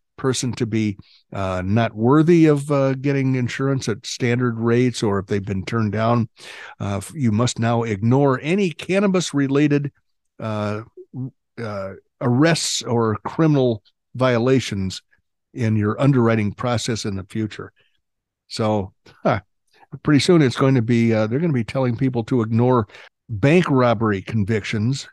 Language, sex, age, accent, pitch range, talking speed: English, male, 60-79, American, 105-140 Hz, 140 wpm